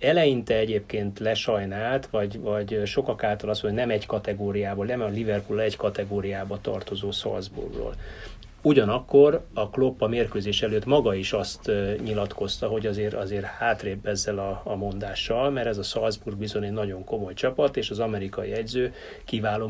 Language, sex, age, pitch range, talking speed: Hungarian, male, 30-49, 105-115 Hz, 155 wpm